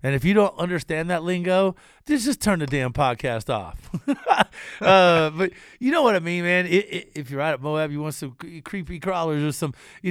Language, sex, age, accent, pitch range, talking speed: English, male, 50-69, American, 145-185 Hz, 220 wpm